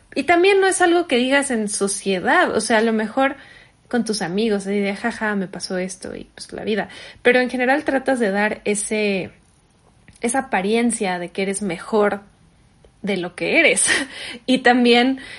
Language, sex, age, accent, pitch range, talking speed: Spanish, female, 20-39, Mexican, 195-240 Hz, 185 wpm